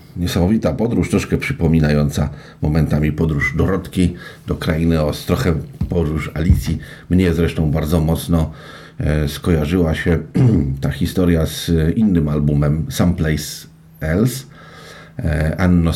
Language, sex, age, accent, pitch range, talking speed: Polish, male, 50-69, native, 75-90 Hz, 105 wpm